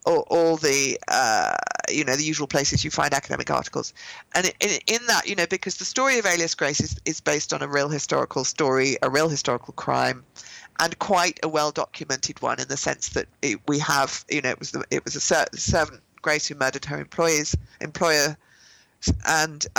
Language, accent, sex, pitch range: English, British, female, 150-185 Hz